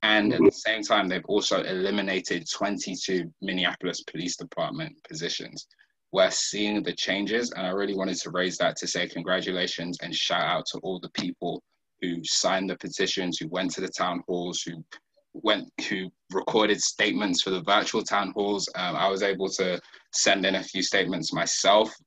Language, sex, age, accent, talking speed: English, male, 20-39, British, 175 wpm